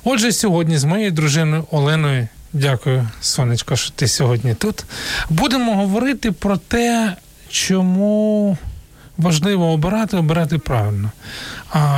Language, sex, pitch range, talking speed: Ukrainian, male, 140-175 Hz, 110 wpm